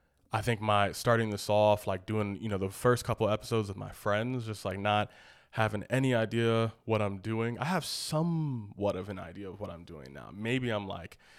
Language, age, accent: English, 20-39, American